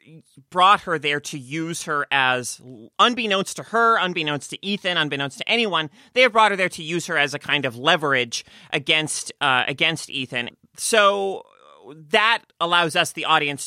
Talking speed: 170 wpm